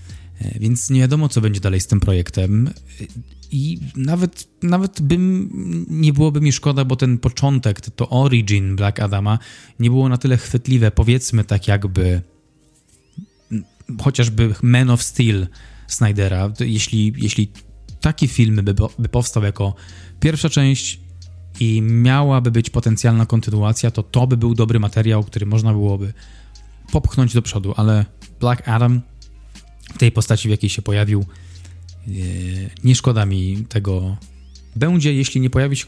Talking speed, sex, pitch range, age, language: 135 wpm, male, 100-130 Hz, 20-39, Polish